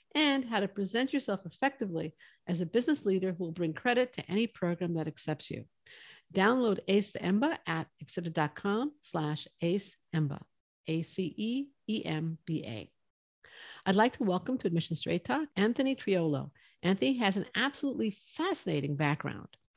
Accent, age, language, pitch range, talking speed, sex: American, 50-69, English, 175-225 Hz, 135 wpm, female